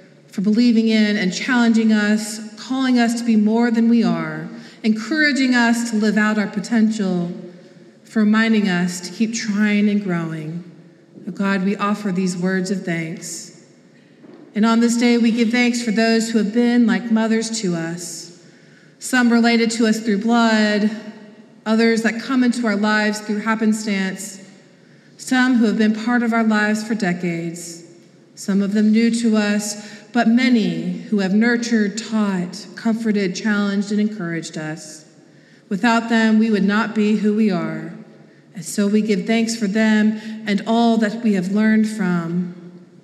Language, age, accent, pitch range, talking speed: English, 40-59, American, 190-225 Hz, 165 wpm